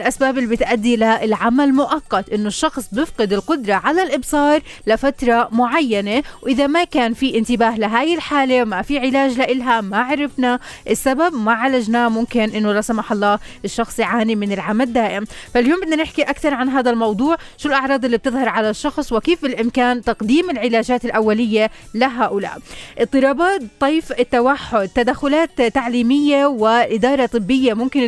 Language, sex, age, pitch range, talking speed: Arabic, female, 20-39, 225-280 Hz, 145 wpm